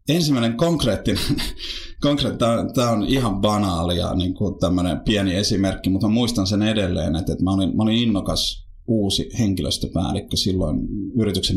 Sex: male